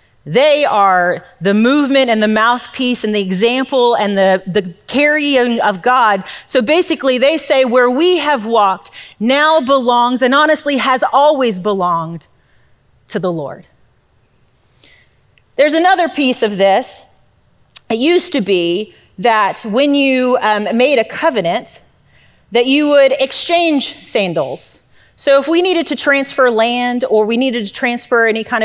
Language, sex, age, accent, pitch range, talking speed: English, female, 30-49, American, 210-280 Hz, 145 wpm